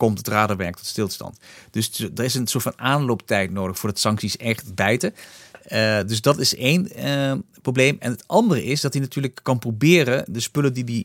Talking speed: 205 wpm